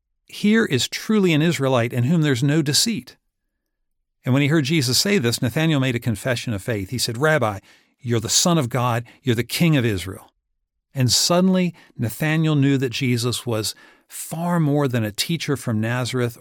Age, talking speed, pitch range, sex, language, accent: 60-79, 185 wpm, 115-150 Hz, male, English, American